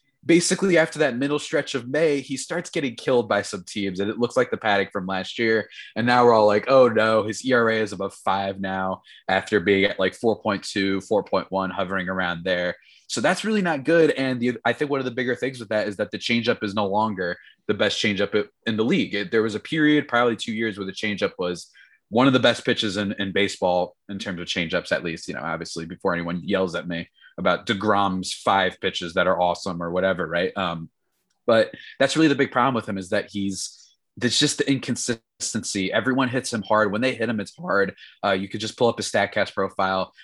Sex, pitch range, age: male, 95-125 Hz, 20-39